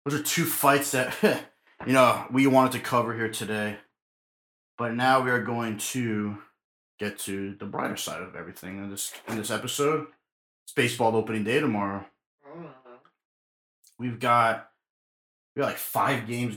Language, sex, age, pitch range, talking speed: English, male, 20-39, 100-120 Hz, 155 wpm